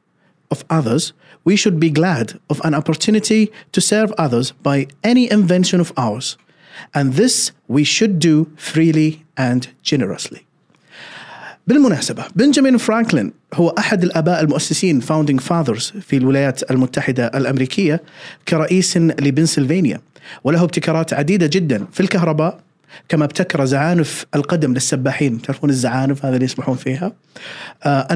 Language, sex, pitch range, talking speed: Arabic, male, 135-175 Hz, 120 wpm